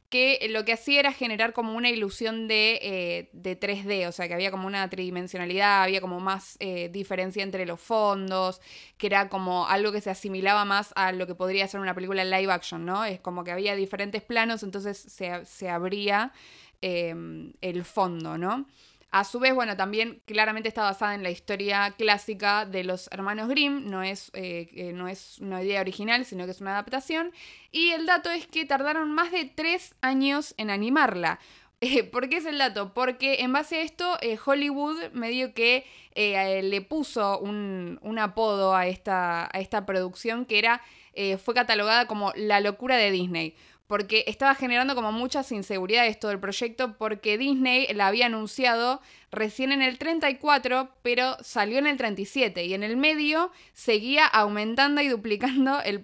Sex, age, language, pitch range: female, 20-39, Spanish, 190-255 Hz